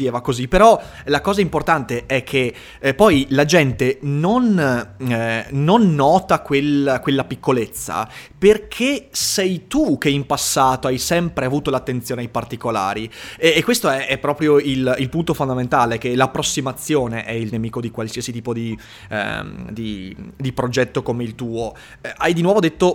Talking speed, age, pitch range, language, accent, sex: 165 wpm, 20-39, 120-165 Hz, Italian, native, male